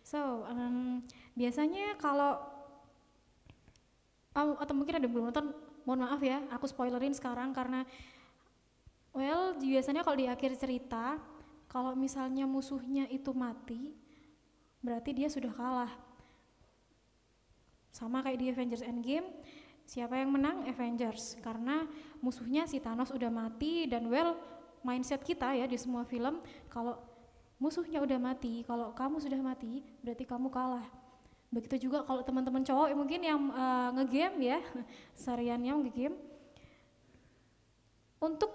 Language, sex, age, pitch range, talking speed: Indonesian, female, 20-39, 250-295 Hz, 125 wpm